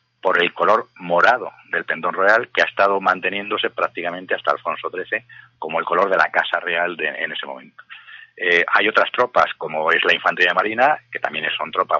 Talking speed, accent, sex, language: 195 wpm, Spanish, male, Spanish